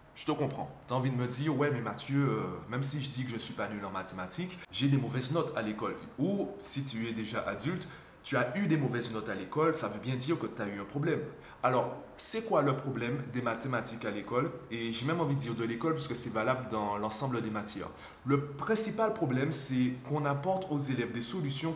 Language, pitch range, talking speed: French, 120-160 Hz, 245 wpm